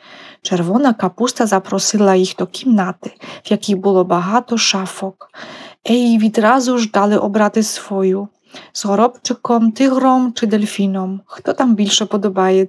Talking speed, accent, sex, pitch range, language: 130 wpm, Polish, female, 195-235 Hz, Ukrainian